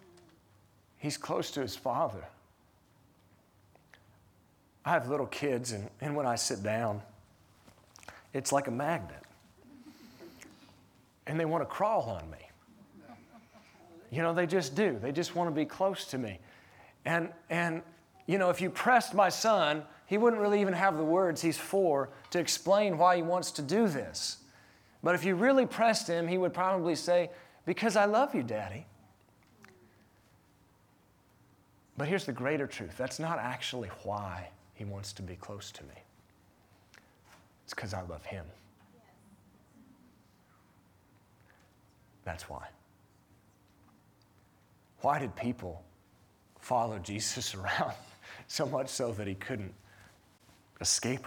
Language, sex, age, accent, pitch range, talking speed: English, male, 40-59, American, 100-170 Hz, 135 wpm